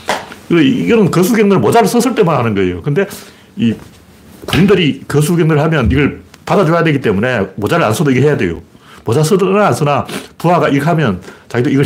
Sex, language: male, Korean